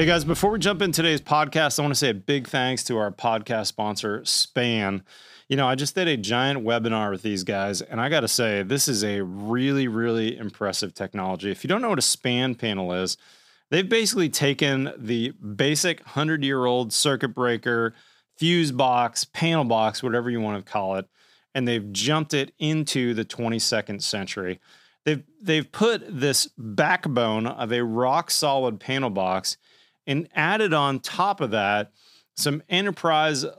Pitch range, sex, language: 110-145 Hz, male, English